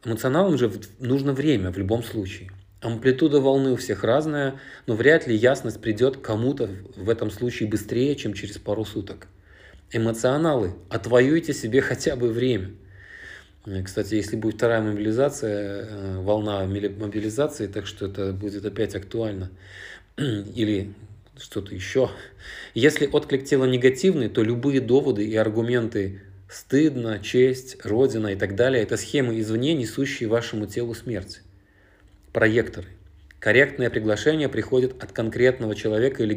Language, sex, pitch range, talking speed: Russian, male, 100-130 Hz, 130 wpm